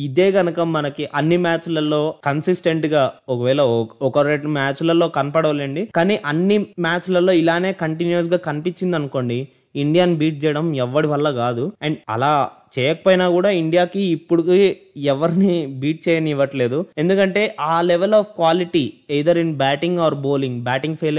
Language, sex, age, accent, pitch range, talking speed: Telugu, male, 20-39, native, 145-180 Hz, 140 wpm